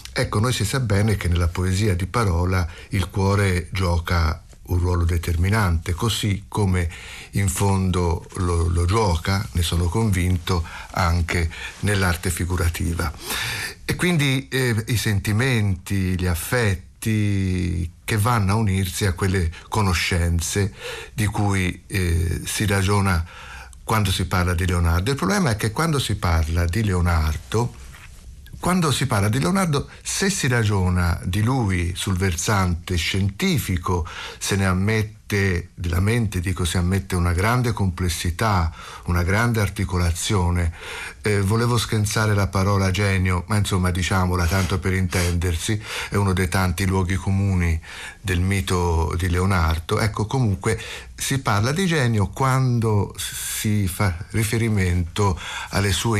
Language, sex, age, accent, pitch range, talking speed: Italian, male, 60-79, native, 90-105 Hz, 130 wpm